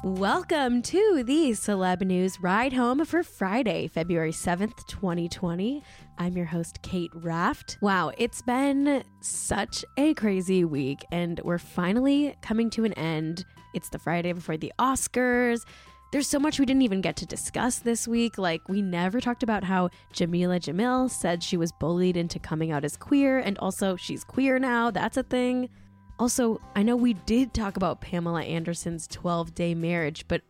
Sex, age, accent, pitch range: female, 10-29, American, 170-235 Hz